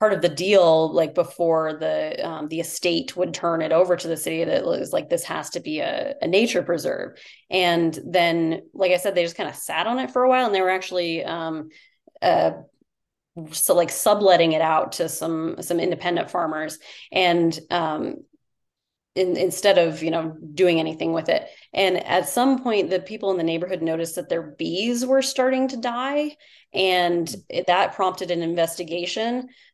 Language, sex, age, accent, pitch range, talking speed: English, female, 30-49, American, 165-190 Hz, 190 wpm